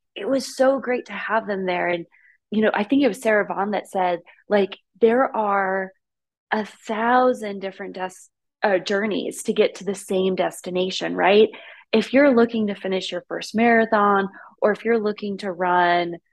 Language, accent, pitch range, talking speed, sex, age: English, American, 190-230 Hz, 175 wpm, female, 20-39